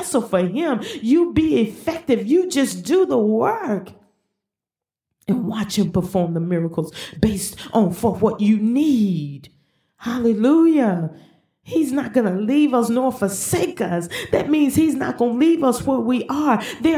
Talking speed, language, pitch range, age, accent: 150 wpm, English, 190-280 Hz, 40-59, American